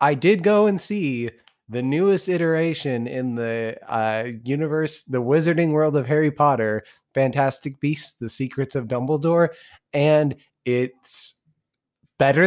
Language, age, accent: English, 20-39, American